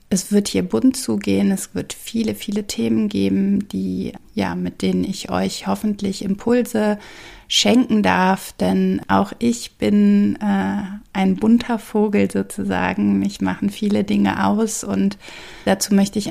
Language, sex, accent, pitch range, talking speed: German, female, German, 175-210 Hz, 145 wpm